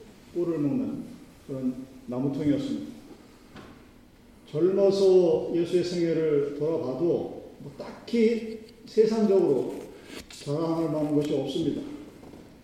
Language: Korean